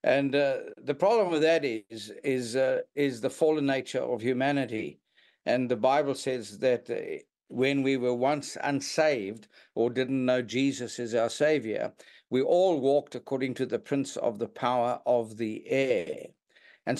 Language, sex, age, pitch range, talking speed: English, male, 60-79, 125-155 Hz, 165 wpm